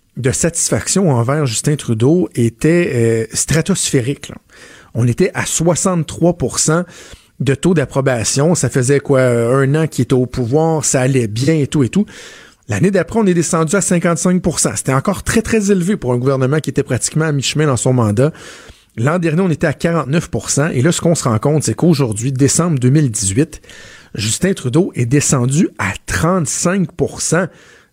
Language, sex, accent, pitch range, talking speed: French, male, Canadian, 130-170 Hz, 165 wpm